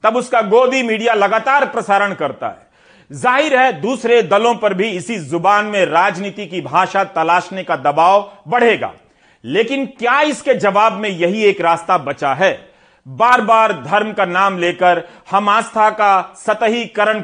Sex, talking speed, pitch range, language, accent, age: male, 150 wpm, 175-230 Hz, Hindi, native, 40-59